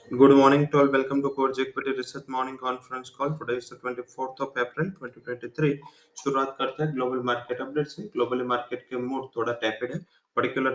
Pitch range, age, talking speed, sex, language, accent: 105-125 Hz, 20-39, 175 wpm, male, English, Indian